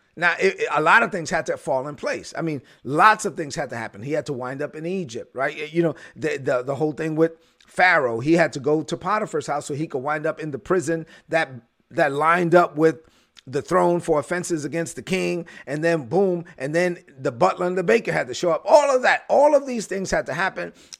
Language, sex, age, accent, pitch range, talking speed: English, male, 40-59, American, 145-175 Hz, 250 wpm